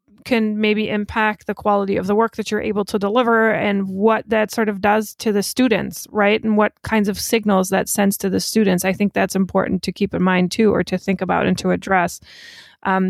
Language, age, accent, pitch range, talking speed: English, 20-39, American, 195-225 Hz, 230 wpm